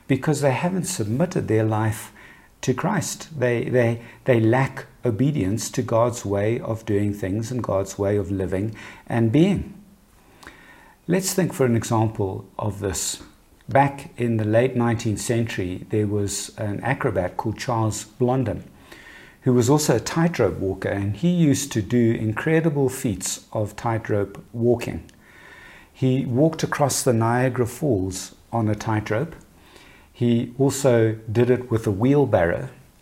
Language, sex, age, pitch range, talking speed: English, male, 60-79, 105-135 Hz, 140 wpm